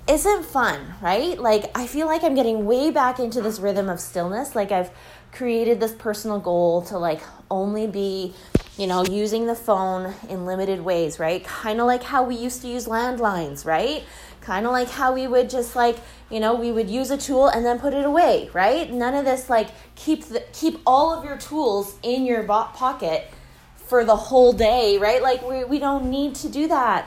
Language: English